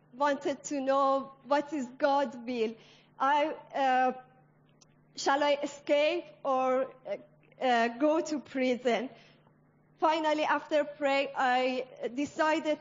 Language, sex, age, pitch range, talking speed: English, female, 30-49, 260-315 Hz, 100 wpm